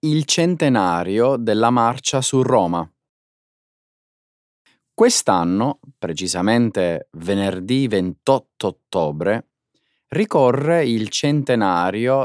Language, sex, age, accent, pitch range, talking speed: Italian, male, 30-49, native, 95-145 Hz, 70 wpm